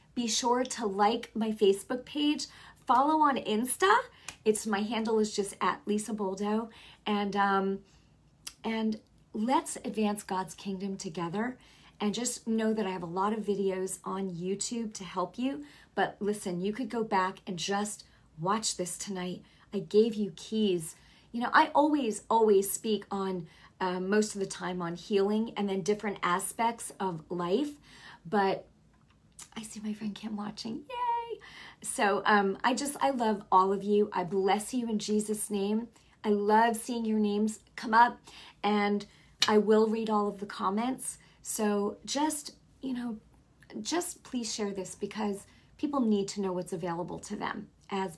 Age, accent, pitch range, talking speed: 30-49, American, 195-225 Hz, 165 wpm